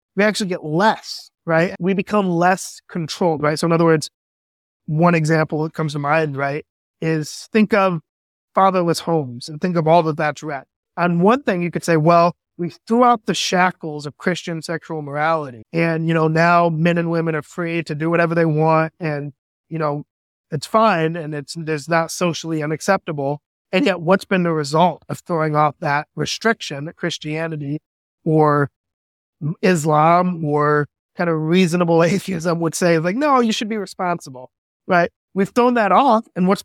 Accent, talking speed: American, 180 wpm